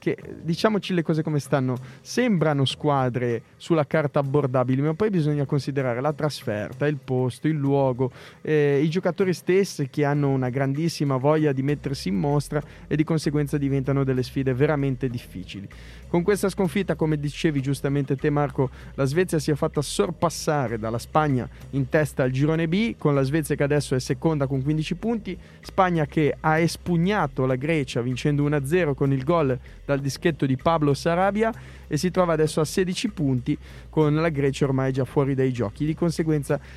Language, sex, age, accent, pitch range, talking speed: Italian, male, 30-49, native, 135-165 Hz, 175 wpm